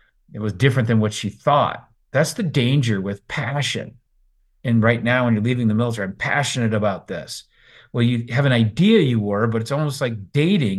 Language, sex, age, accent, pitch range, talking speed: English, male, 40-59, American, 110-145 Hz, 200 wpm